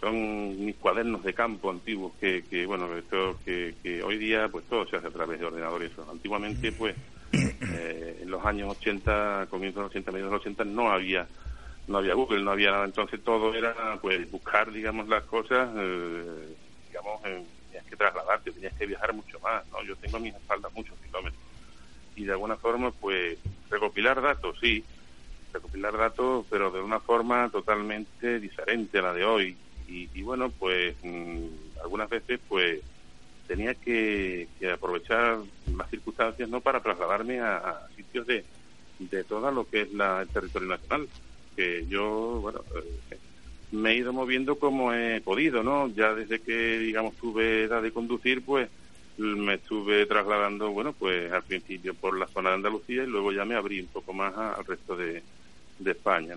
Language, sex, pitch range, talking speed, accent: Spanish, male, 85-115 Hz, 180 wpm, Argentinian